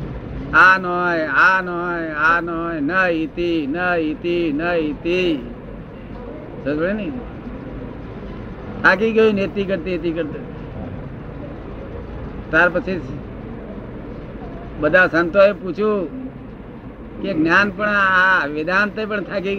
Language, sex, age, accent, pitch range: Gujarati, male, 60-79, native, 150-195 Hz